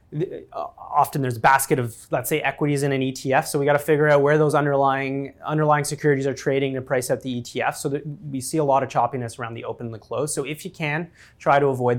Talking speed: 250 wpm